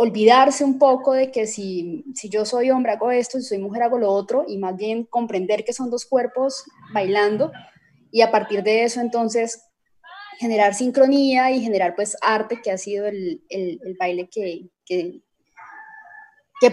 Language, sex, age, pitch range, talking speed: Spanish, female, 20-39, 205-255 Hz, 180 wpm